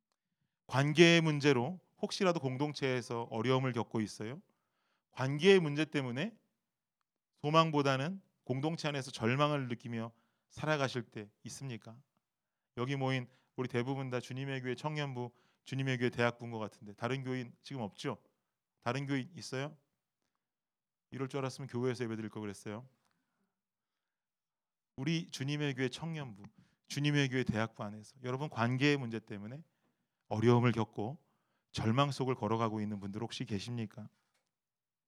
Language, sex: Korean, male